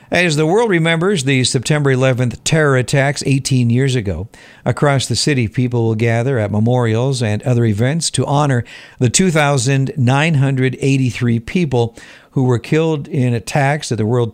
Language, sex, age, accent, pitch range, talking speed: English, male, 60-79, American, 115-145 Hz, 150 wpm